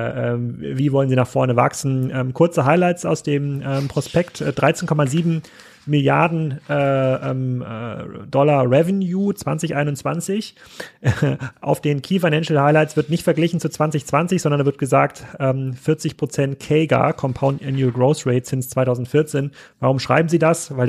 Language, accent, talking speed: German, German, 130 wpm